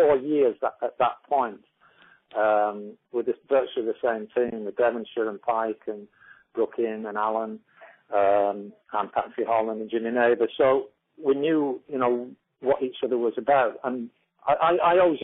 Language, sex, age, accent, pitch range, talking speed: English, male, 50-69, British, 110-135 Hz, 160 wpm